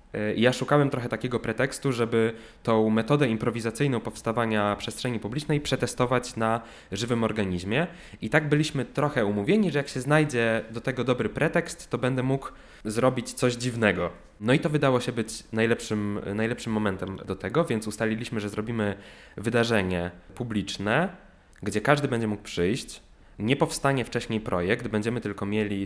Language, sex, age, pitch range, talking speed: Polish, male, 20-39, 105-130 Hz, 150 wpm